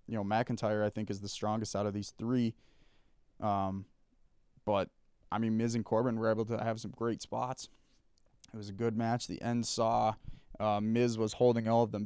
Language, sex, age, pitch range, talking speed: English, male, 20-39, 105-120 Hz, 205 wpm